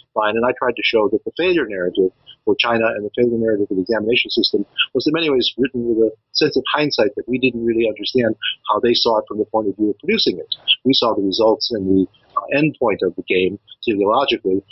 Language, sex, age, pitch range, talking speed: English, male, 50-69, 110-160 Hz, 245 wpm